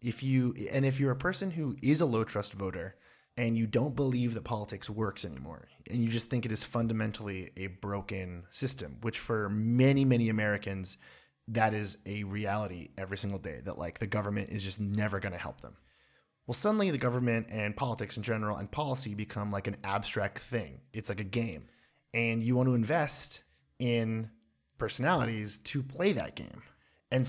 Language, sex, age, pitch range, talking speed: English, male, 30-49, 105-130 Hz, 185 wpm